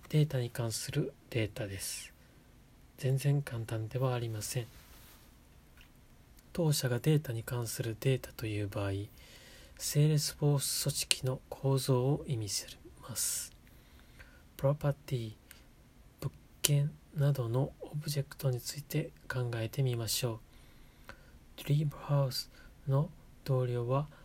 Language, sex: Japanese, male